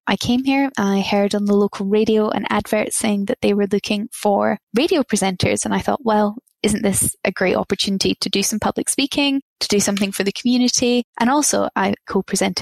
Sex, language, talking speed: female, English, 205 wpm